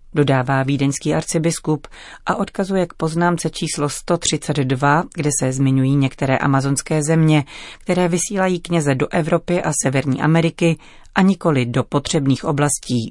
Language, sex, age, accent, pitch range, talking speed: Czech, female, 30-49, native, 135-160 Hz, 130 wpm